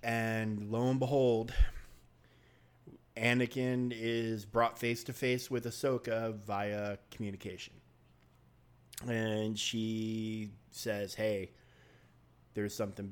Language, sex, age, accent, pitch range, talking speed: English, male, 30-49, American, 100-120 Hz, 90 wpm